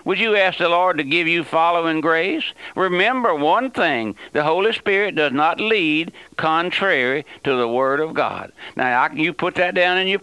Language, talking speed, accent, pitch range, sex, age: English, 190 wpm, American, 150-185 Hz, male, 60-79